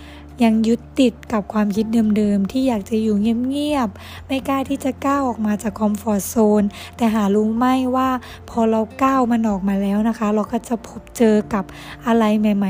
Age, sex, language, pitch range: 20-39, female, Thai, 210-260 Hz